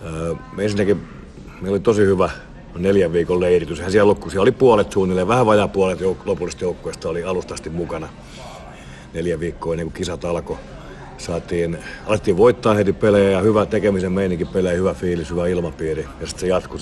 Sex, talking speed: male, 165 wpm